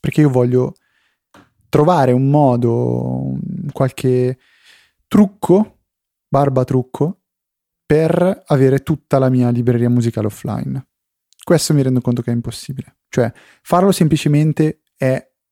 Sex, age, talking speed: male, 30-49, 110 wpm